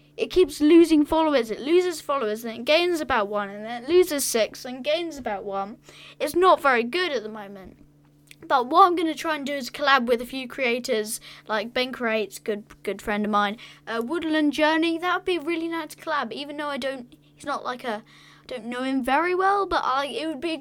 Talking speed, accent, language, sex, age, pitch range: 225 wpm, British, English, female, 10-29, 215-305 Hz